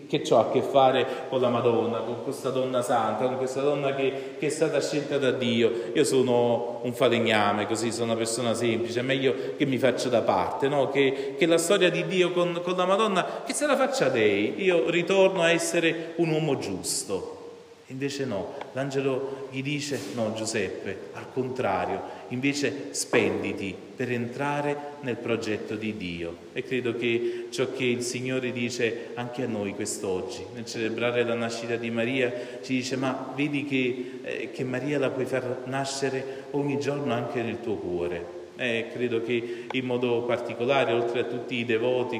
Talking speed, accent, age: 180 wpm, native, 30-49